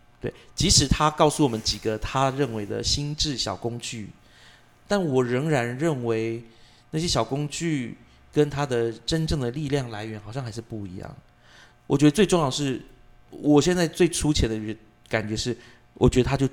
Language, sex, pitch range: Chinese, male, 110-145 Hz